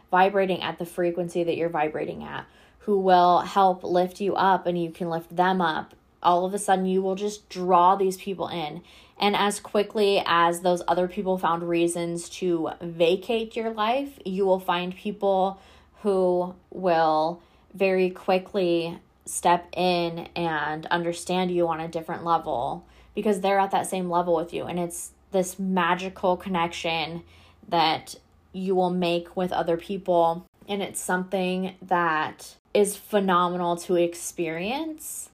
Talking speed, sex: 150 wpm, female